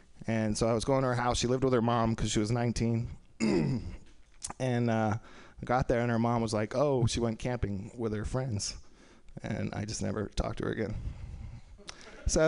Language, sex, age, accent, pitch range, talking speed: English, male, 20-39, American, 110-135 Hz, 205 wpm